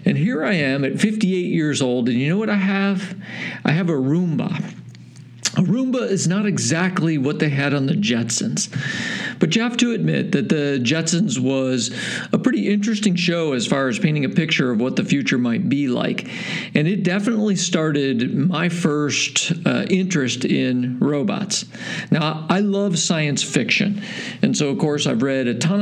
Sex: male